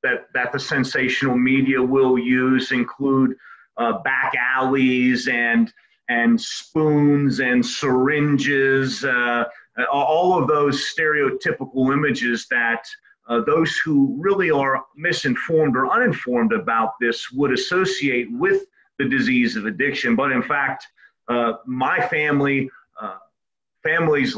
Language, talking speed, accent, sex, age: English, 120 wpm, American, male, 40-59